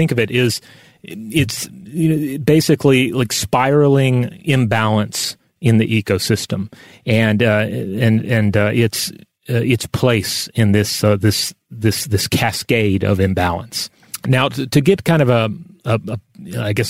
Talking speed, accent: 150 wpm, American